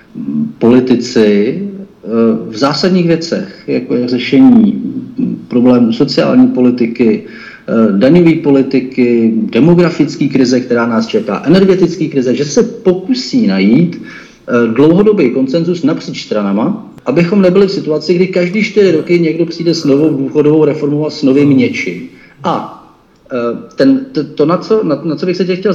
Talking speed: 135 wpm